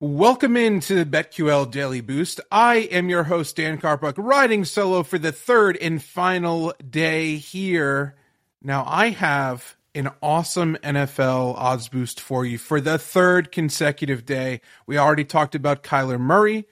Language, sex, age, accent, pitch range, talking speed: English, male, 30-49, American, 140-205 Hz, 150 wpm